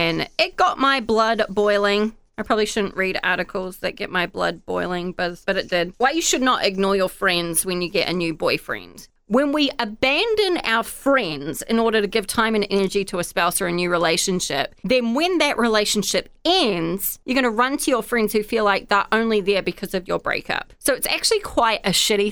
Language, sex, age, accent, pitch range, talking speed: English, female, 30-49, Australian, 185-240 Hz, 210 wpm